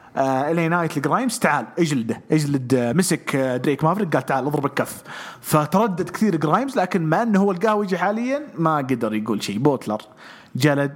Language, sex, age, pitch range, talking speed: English, male, 30-49, 130-170 Hz, 150 wpm